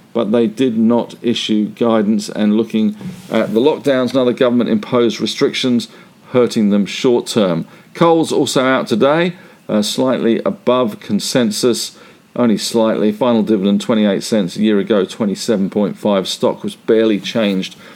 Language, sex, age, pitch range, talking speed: English, male, 50-69, 105-130 Hz, 135 wpm